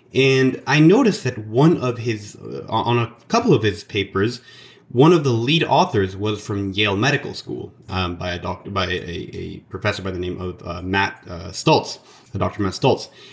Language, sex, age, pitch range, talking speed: English, male, 30-49, 105-140 Hz, 195 wpm